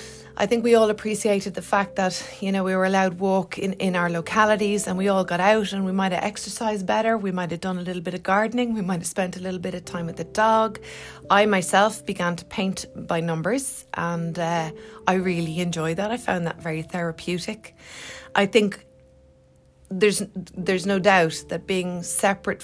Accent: Irish